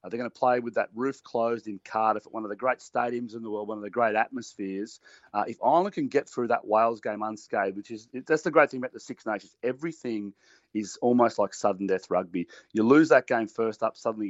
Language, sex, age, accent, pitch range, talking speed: English, male, 30-49, Australian, 110-135 Hz, 245 wpm